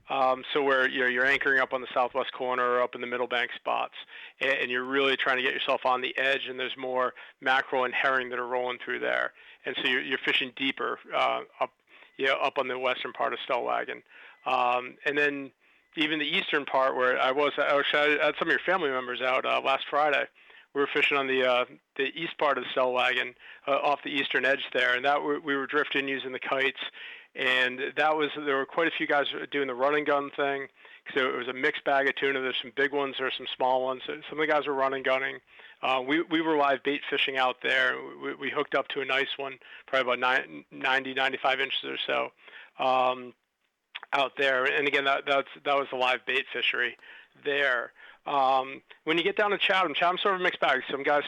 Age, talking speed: 40-59, 230 wpm